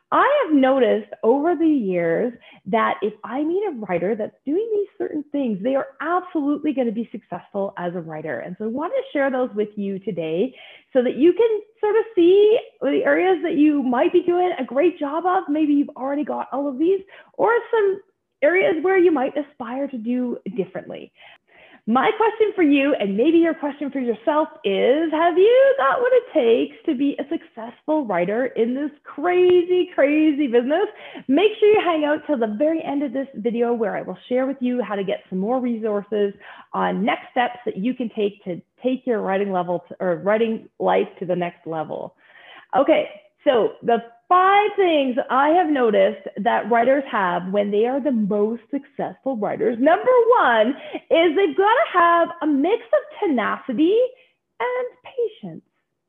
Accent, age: American, 30-49